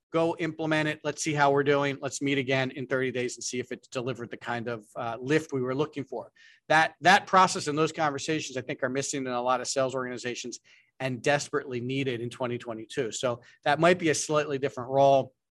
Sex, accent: male, American